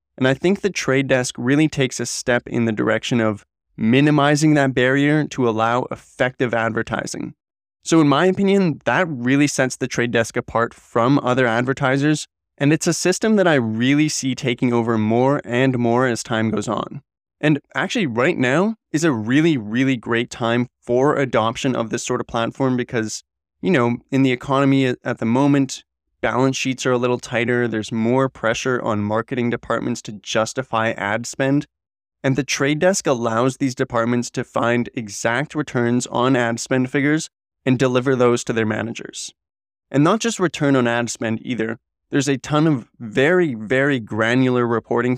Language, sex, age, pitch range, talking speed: English, male, 20-39, 115-140 Hz, 175 wpm